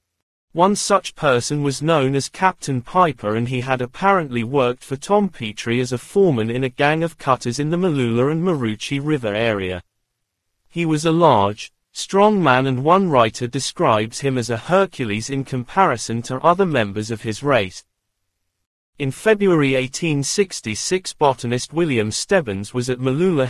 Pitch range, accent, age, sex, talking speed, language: 115-160 Hz, British, 40-59, male, 160 wpm, English